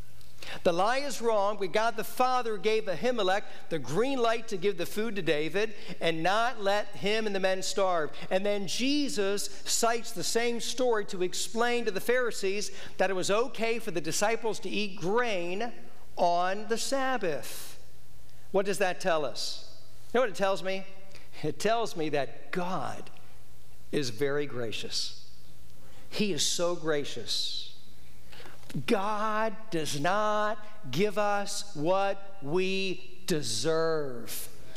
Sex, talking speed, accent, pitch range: male, 140 wpm, American, 155-220 Hz